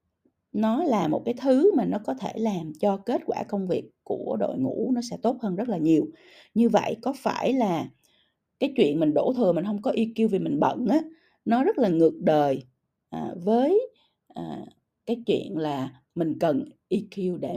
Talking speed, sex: 200 wpm, female